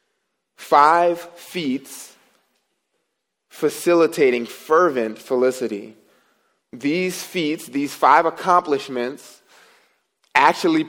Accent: American